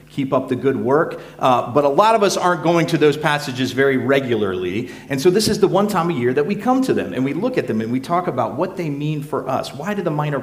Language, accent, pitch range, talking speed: English, American, 125-170 Hz, 290 wpm